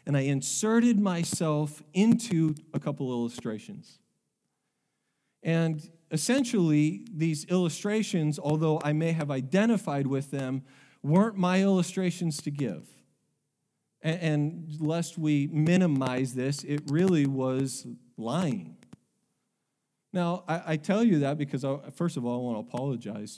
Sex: male